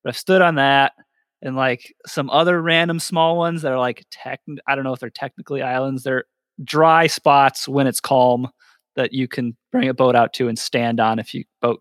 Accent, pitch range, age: American, 125-185 Hz, 30-49